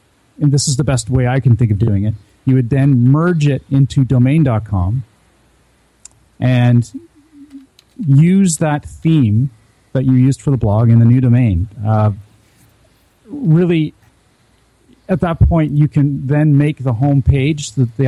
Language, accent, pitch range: English, American, 115-145 Hz